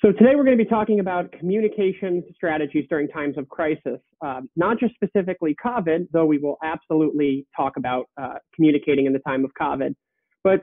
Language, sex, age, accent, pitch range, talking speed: English, male, 30-49, American, 145-180 Hz, 185 wpm